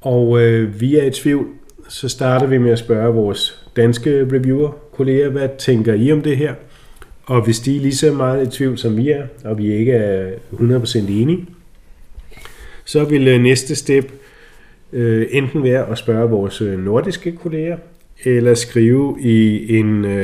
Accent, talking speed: native, 155 wpm